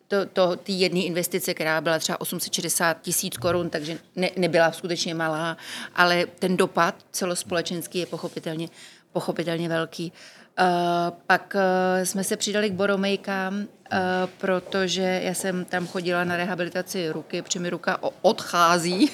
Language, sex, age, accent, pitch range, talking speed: Czech, female, 30-49, native, 170-185 Hz, 120 wpm